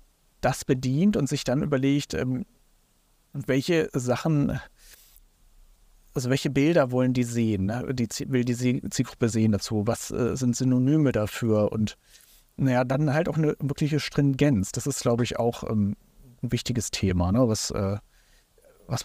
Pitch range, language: 110-140 Hz, German